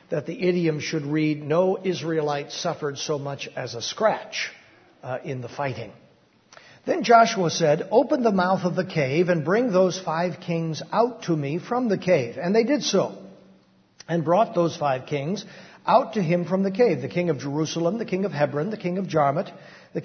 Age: 60-79